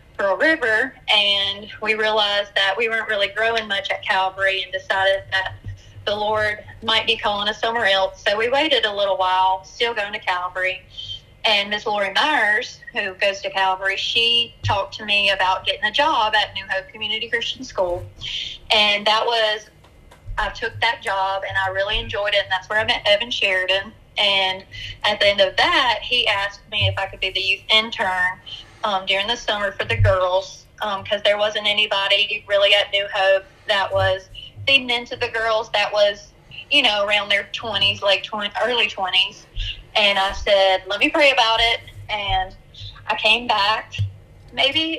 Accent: American